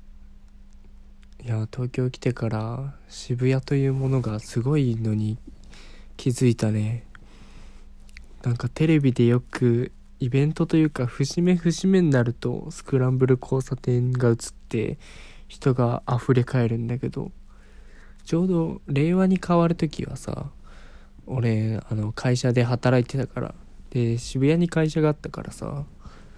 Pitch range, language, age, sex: 110-140 Hz, Japanese, 20-39, male